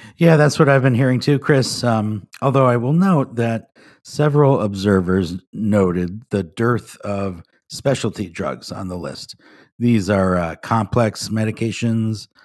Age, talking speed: 50-69, 145 wpm